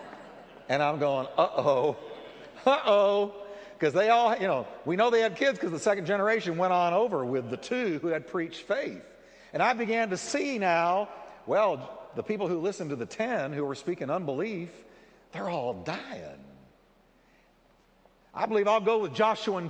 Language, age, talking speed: English, 60-79, 175 wpm